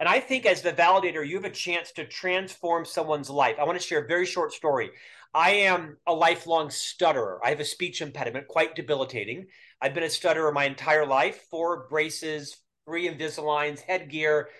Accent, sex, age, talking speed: American, male, 30-49, 190 wpm